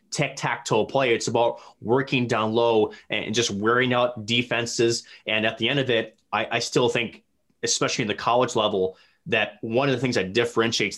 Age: 30-49